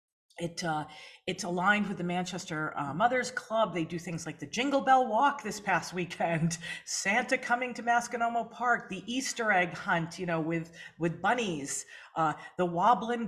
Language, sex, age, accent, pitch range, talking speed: English, female, 40-59, American, 160-220 Hz, 170 wpm